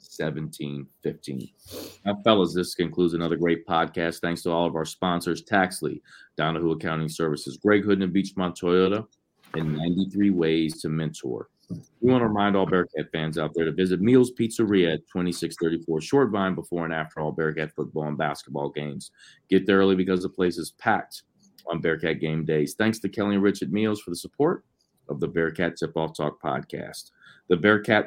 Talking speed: 190 wpm